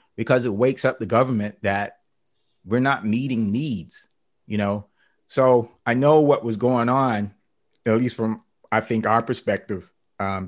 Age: 30-49